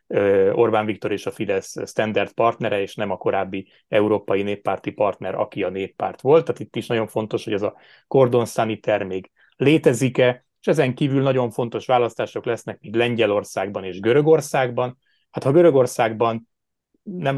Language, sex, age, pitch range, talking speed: Hungarian, male, 30-49, 105-130 Hz, 150 wpm